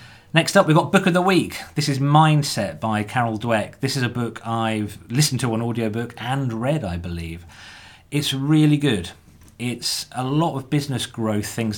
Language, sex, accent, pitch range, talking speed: English, male, British, 100-130 Hz, 190 wpm